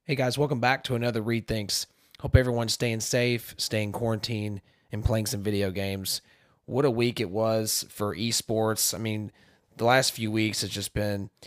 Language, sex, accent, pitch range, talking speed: English, male, American, 100-115 Hz, 180 wpm